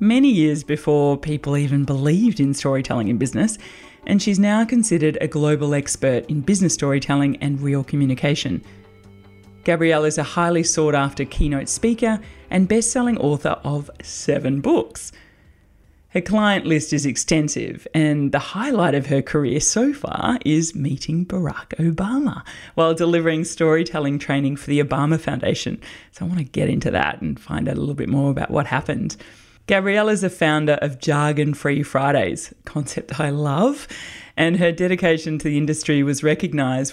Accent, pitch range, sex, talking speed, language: Australian, 140-180 Hz, female, 160 wpm, English